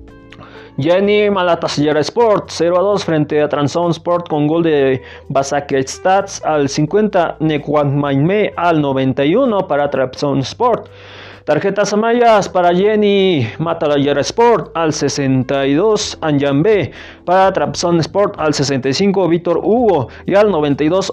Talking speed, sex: 120 wpm, male